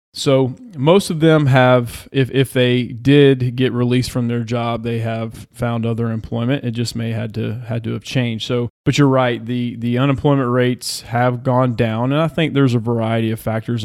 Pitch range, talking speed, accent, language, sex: 115-130 Hz, 210 wpm, American, English, male